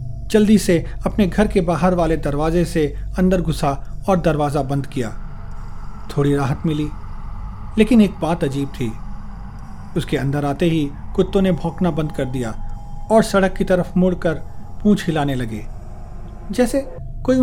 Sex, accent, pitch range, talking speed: male, native, 130-180 Hz, 150 wpm